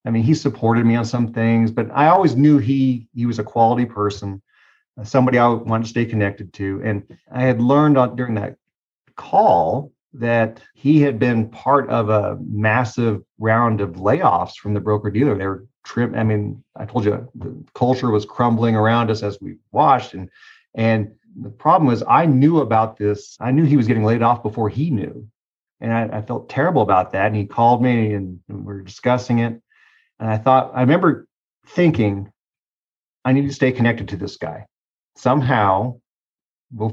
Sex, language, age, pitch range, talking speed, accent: male, English, 40-59, 105-130 Hz, 185 wpm, American